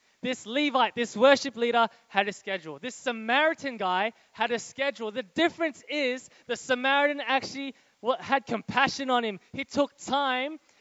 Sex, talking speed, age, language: male, 150 wpm, 20-39, English